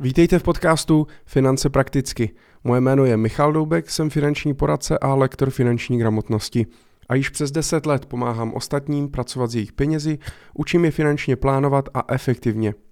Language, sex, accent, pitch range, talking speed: Czech, male, native, 120-145 Hz, 160 wpm